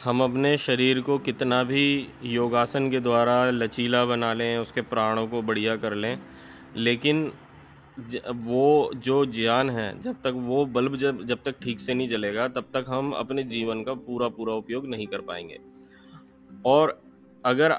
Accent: native